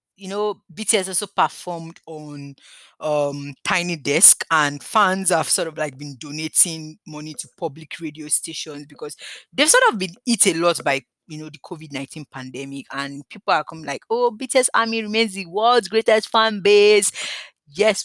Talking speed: 175 wpm